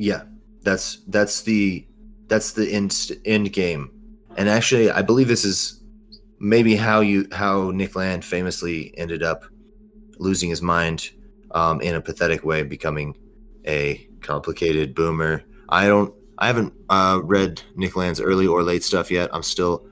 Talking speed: 155 wpm